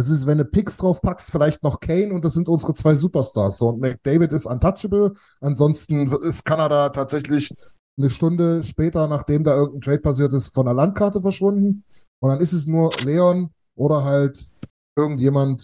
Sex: male